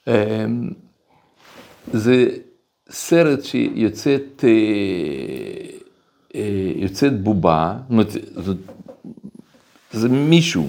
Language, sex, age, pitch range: Hebrew, male, 60-79, 95-140 Hz